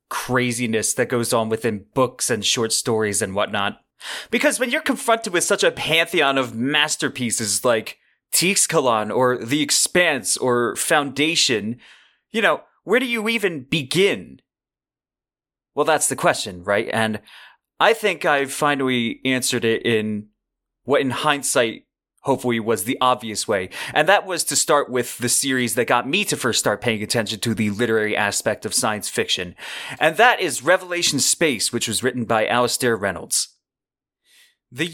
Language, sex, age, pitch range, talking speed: English, male, 30-49, 115-150 Hz, 155 wpm